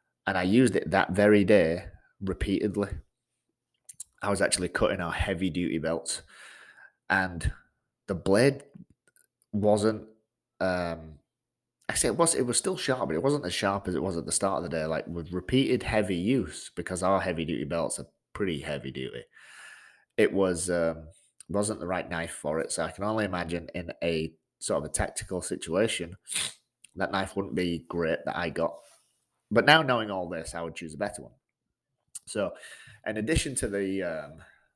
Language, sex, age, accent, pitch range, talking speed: English, male, 30-49, British, 85-105 Hz, 175 wpm